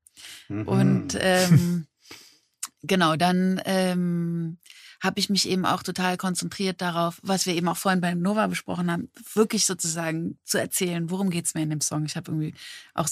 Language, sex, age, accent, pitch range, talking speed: German, female, 30-49, German, 170-195 Hz, 170 wpm